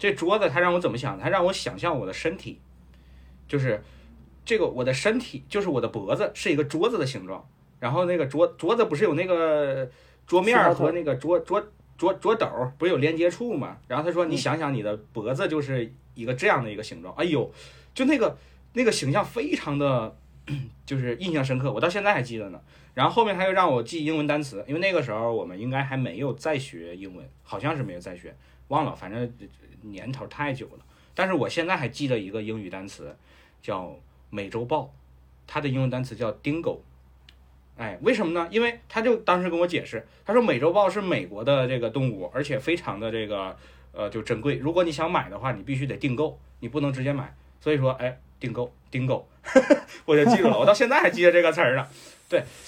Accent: native